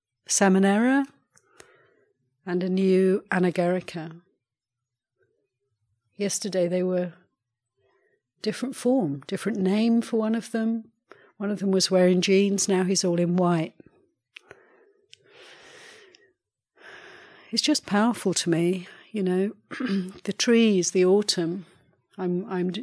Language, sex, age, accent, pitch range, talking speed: English, female, 60-79, British, 175-220 Hz, 105 wpm